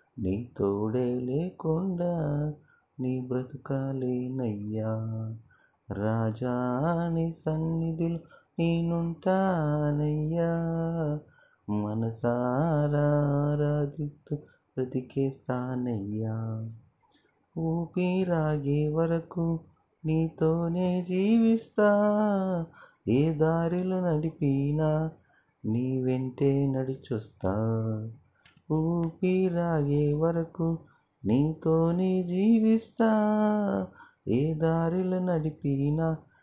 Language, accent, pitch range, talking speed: Telugu, native, 135-195 Hz, 40 wpm